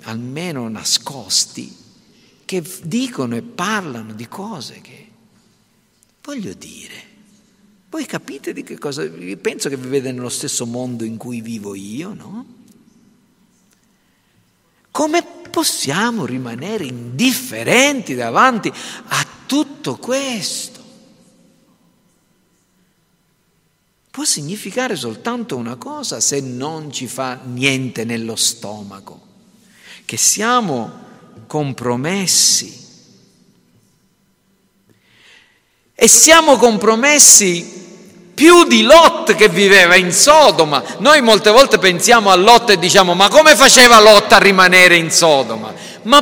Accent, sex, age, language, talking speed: native, male, 50-69, Italian, 100 wpm